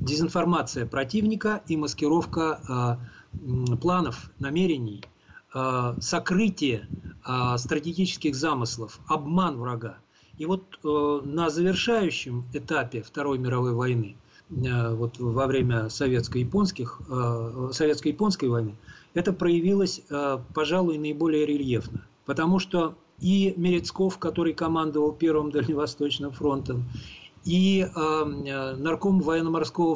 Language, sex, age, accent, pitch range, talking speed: Russian, male, 40-59, native, 130-165 Hz, 95 wpm